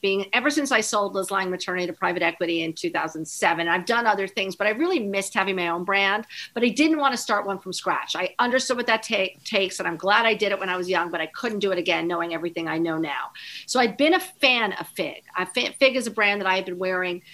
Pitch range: 180-215 Hz